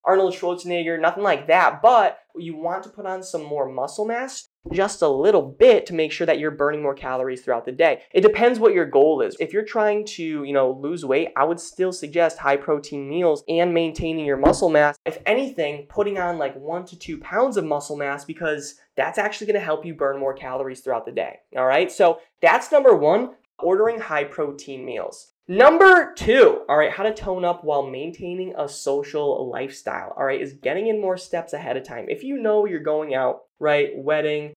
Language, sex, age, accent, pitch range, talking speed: English, male, 20-39, American, 145-210 Hz, 210 wpm